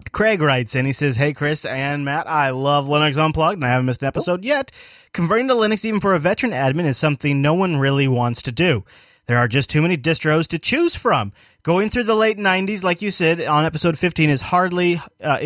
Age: 20-39